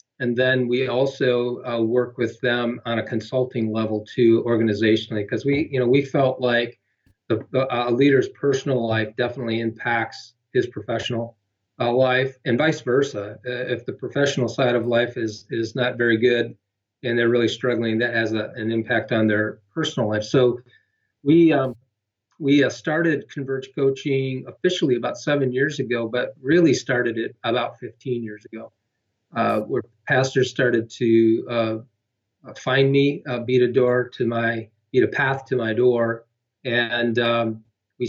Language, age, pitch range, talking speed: English, 40-59, 115-130 Hz, 165 wpm